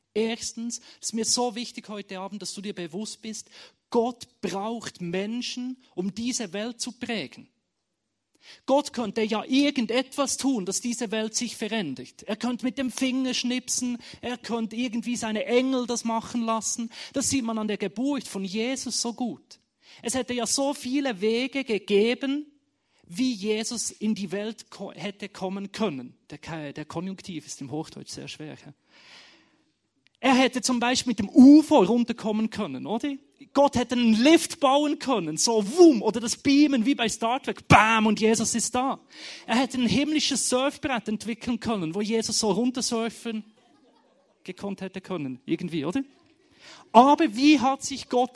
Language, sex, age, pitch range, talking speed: German, male, 30-49, 200-255 Hz, 165 wpm